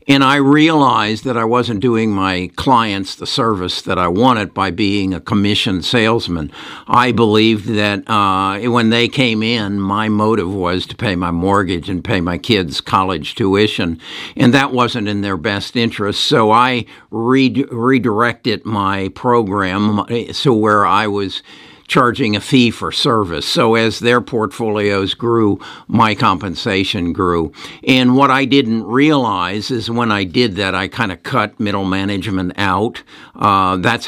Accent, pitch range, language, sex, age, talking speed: American, 95-120 Hz, English, male, 60-79, 155 wpm